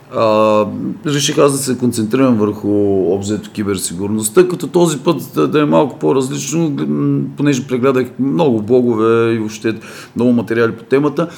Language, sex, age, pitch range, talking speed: Bulgarian, male, 40-59, 100-125 Hz, 135 wpm